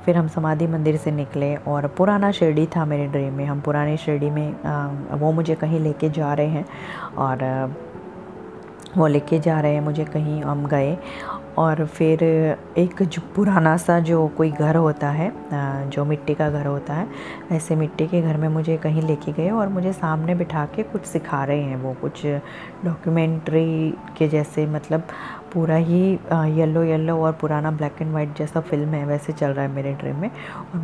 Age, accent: 20-39, native